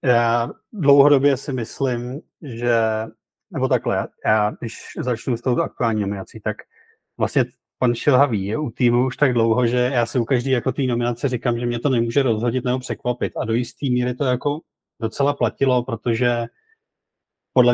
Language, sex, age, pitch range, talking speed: Czech, male, 30-49, 110-125 Hz, 175 wpm